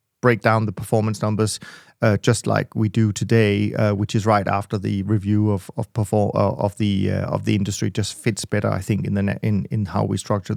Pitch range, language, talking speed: 105-120 Hz, English, 240 wpm